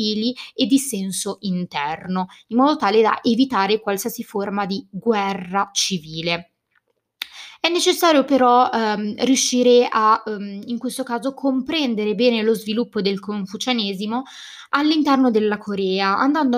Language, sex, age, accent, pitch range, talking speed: Italian, female, 20-39, native, 205-255 Hz, 125 wpm